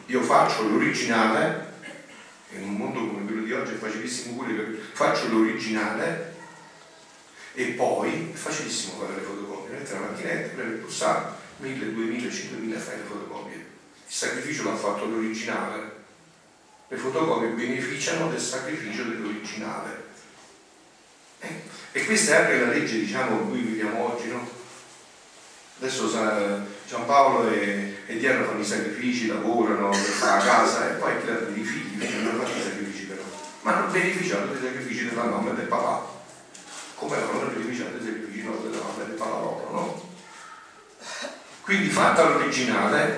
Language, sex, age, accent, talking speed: Italian, male, 40-59, native, 155 wpm